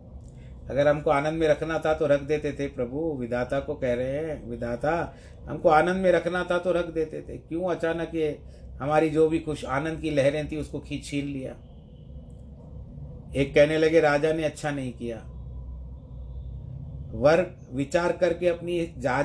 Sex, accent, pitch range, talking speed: male, native, 105-165 Hz, 165 wpm